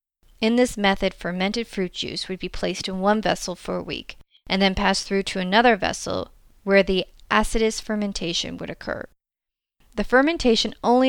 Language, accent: English, American